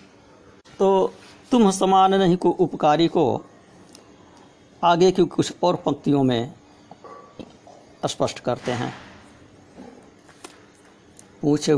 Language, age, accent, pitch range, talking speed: Hindi, 60-79, native, 140-175 Hz, 85 wpm